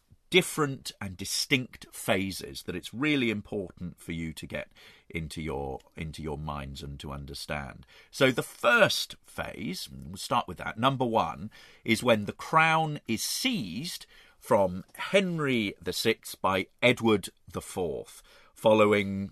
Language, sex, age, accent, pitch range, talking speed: English, male, 40-59, British, 85-135 Hz, 135 wpm